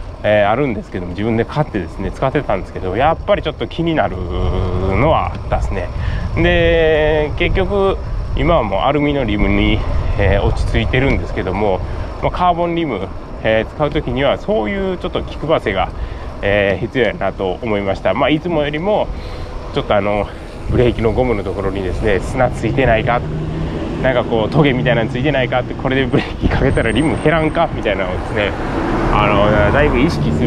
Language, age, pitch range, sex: Japanese, 20-39, 90-135 Hz, male